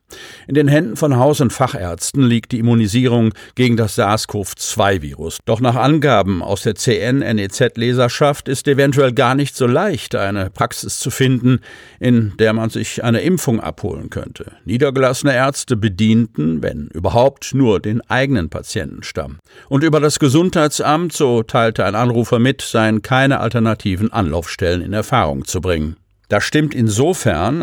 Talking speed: 145 wpm